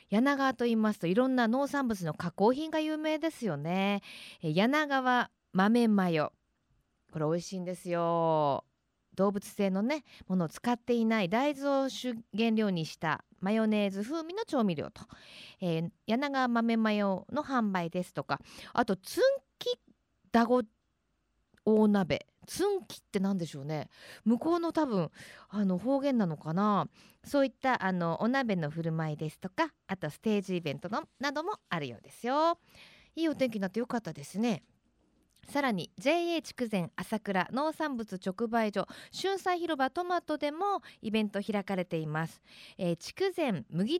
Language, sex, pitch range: Japanese, female, 185-280 Hz